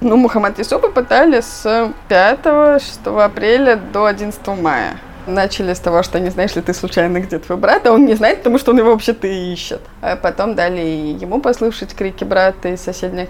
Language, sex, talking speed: Russian, female, 195 wpm